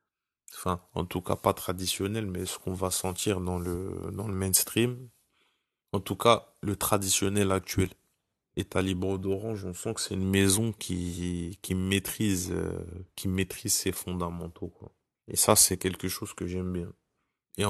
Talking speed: 170 wpm